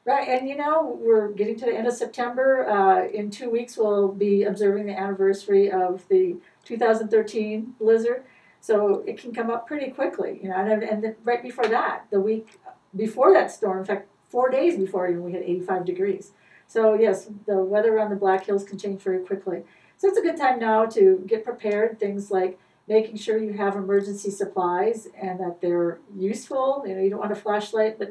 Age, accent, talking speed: 40-59, American, 200 wpm